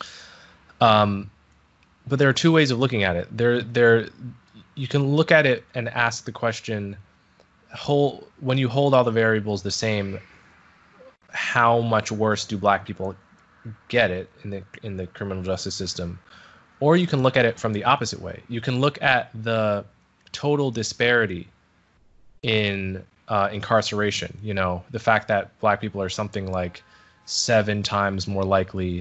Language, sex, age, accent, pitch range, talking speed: English, male, 20-39, American, 95-115 Hz, 165 wpm